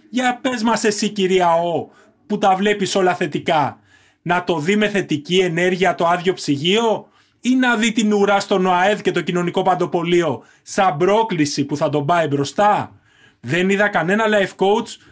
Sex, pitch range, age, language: male, 175-215 Hz, 30-49, Greek